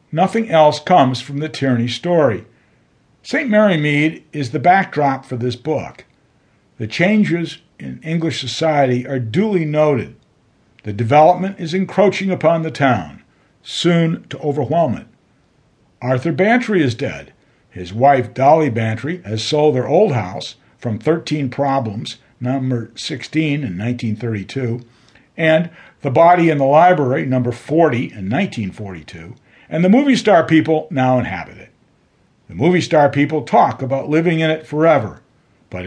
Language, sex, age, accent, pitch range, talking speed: English, male, 60-79, American, 125-165 Hz, 140 wpm